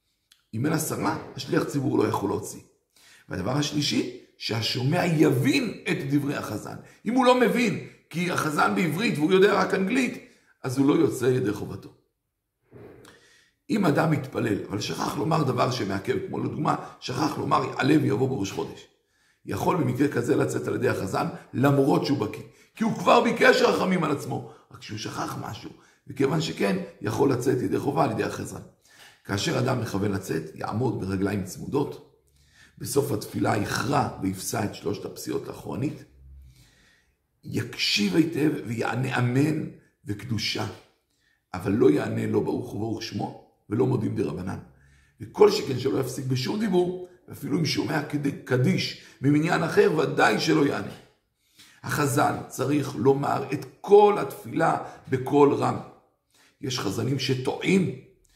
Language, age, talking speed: Hebrew, 50-69, 140 wpm